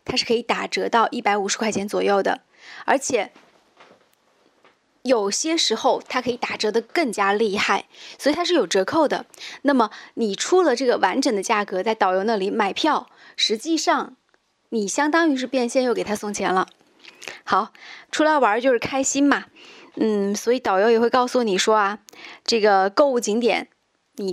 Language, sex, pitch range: Chinese, female, 210-290 Hz